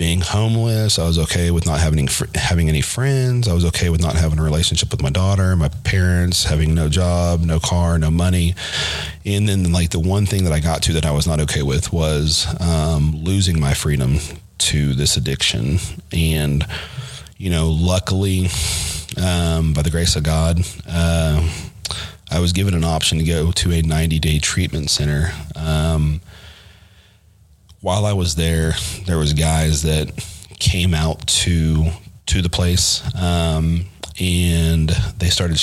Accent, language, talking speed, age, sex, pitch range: American, English, 165 wpm, 30-49, male, 80-90 Hz